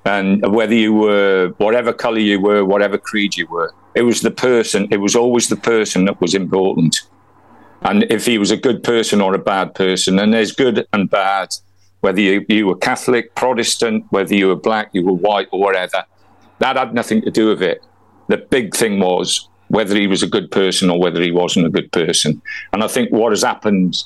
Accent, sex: British, male